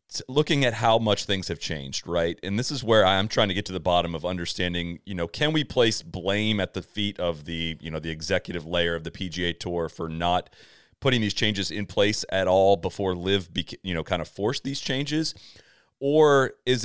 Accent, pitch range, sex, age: American, 90-115 Hz, male, 30-49